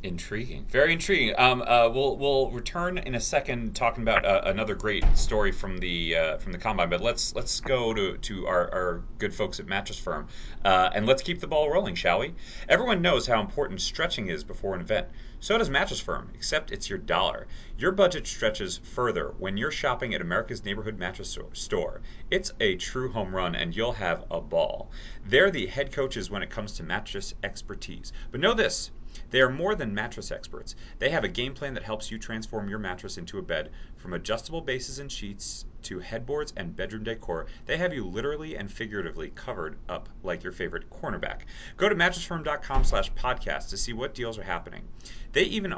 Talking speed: 200 wpm